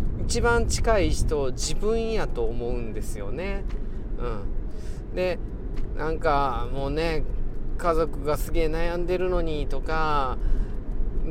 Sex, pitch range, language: male, 120-180 Hz, Japanese